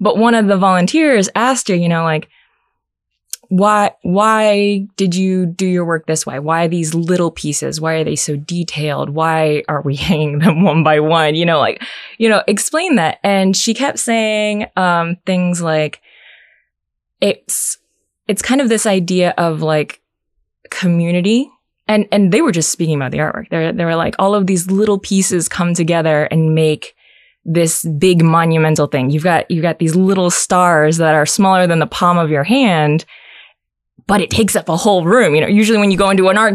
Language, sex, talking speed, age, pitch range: English, female, 195 wpm, 20-39, 165-210 Hz